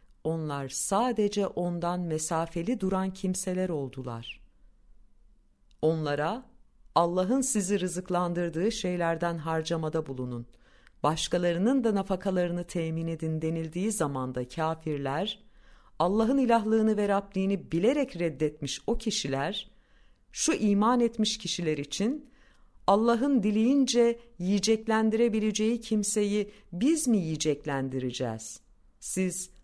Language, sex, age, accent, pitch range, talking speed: Turkish, female, 50-69, native, 155-225 Hz, 85 wpm